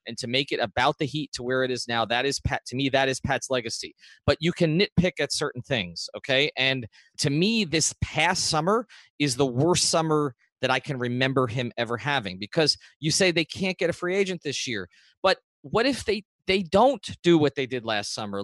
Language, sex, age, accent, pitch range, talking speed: English, male, 30-49, American, 135-195 Hz, 225 wpm